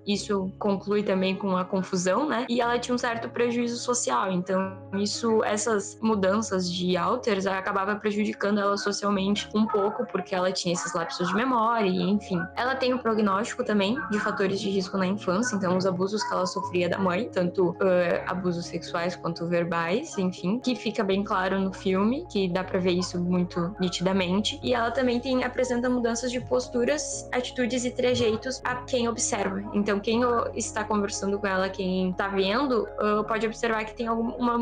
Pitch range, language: 195-230 Hz, Portuguese